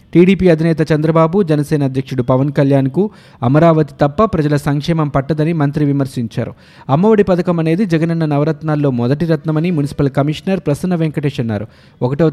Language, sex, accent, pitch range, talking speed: Telugu, male, native, 135-165 Hz, 130 wpm